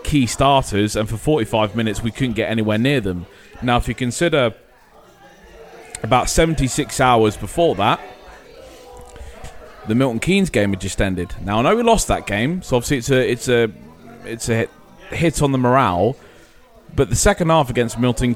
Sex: male